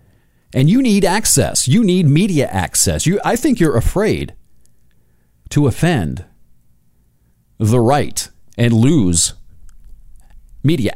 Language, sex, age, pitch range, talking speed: English, male, 40-59, 80-135 Hz, 110 wpm